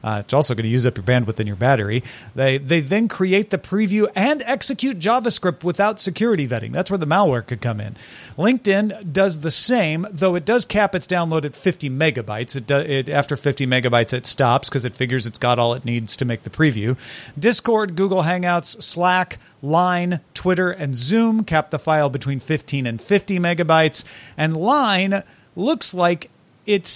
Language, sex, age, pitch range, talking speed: English, male, 40-59, 135-190 Hz, 190 wpm